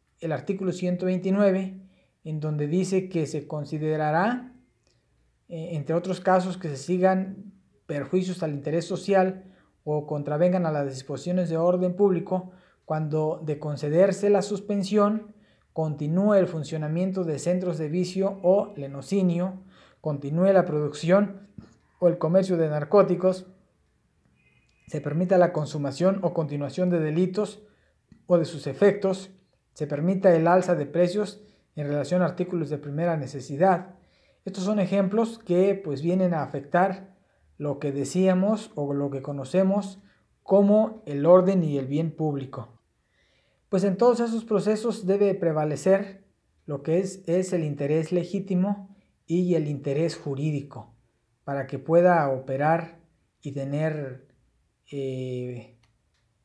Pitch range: 150-190 Hz